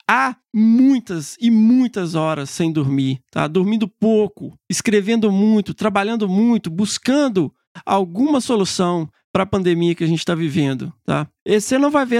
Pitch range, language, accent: 175-235 Hz, Portuguese, Brazilian